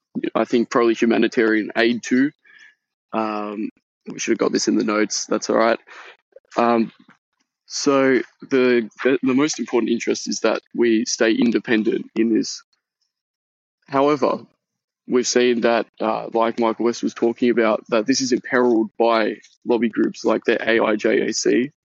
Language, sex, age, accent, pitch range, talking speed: English, male, 20-39, Australian, 115-135 Hz, 150 wpm